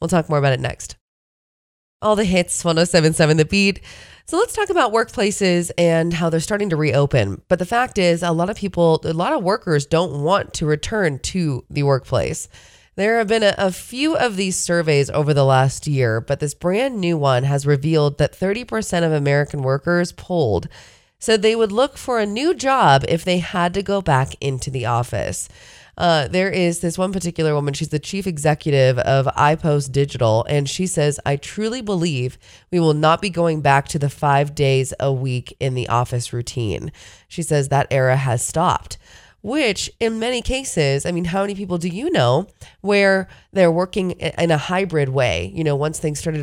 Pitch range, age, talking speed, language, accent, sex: 140-190 Hz, 20-39, 195 wpm, English, American, female